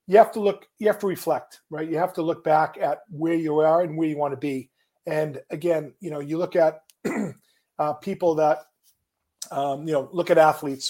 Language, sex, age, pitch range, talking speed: English, male, 40-59, 150-170 Hz, 220 wpm